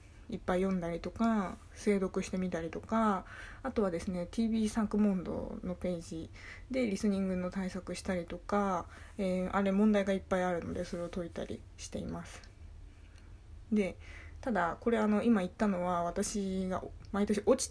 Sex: female